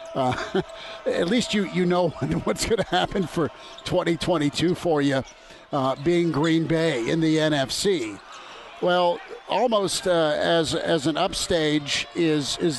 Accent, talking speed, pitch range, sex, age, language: American, 140 wpm, 150-170 Hz, male, 50-69, English